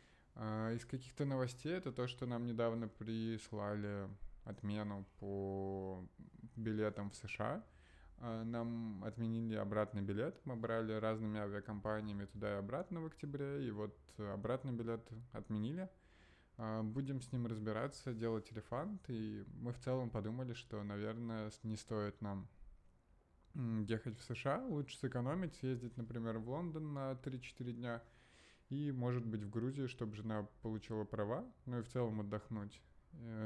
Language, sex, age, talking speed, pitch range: Russian, male, 20-39, 135 wpm, 105-125 Hz